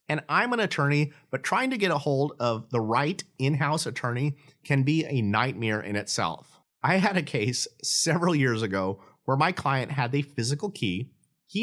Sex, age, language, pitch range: male, 30-49, English, 115-170 Hz